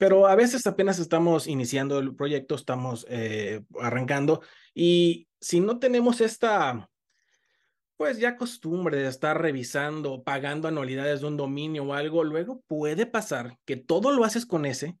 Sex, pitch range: male, 130-170 Hz